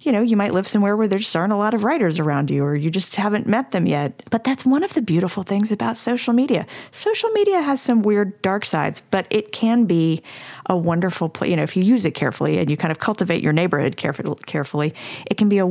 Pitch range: 155-210 Hz